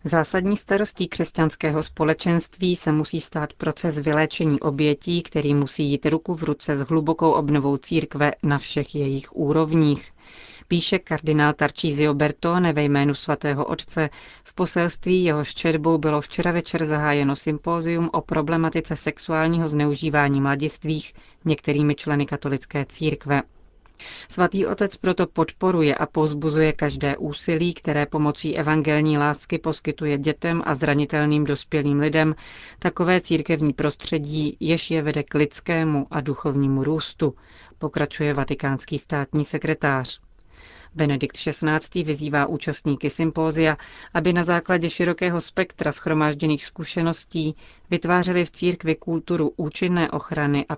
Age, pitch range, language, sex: 30-49, 145-165 Hz, Czech, female